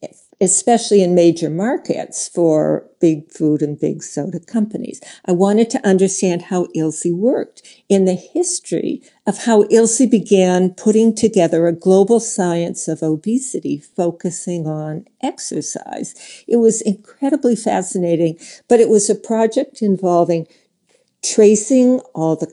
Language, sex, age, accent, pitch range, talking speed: English, female, 60-79, American, 170-220 Hz, 130 wpm